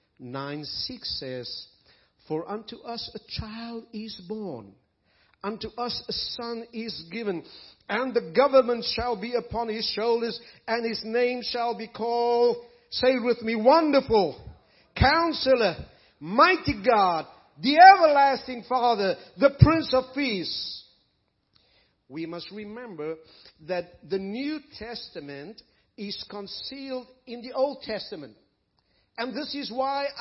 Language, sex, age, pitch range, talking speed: English, male, 50-69, 155-245 Hz, 125 wpm